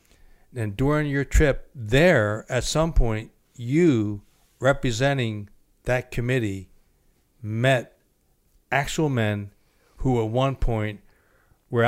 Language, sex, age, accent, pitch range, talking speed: English, male, 60-79, American, 105-125 Hz, 100 wpm